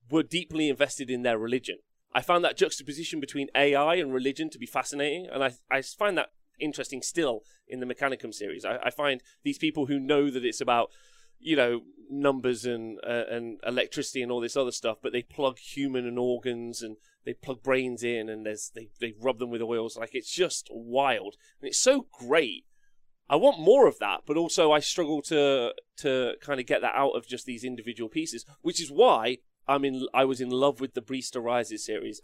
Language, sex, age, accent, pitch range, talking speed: English, male, 30-49, British, 125-165 Hz, 210 wpm